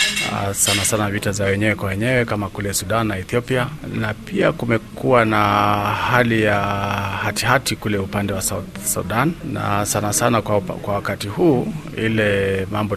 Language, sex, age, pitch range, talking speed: Swahili, male, 40-59, 100-110 Hz, 160 wpm